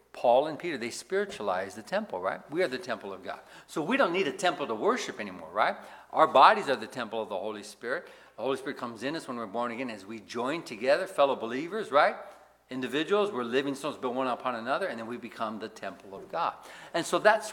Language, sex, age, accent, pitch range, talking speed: English, male, 60-79, American, 120-195 Hz, 235 wpm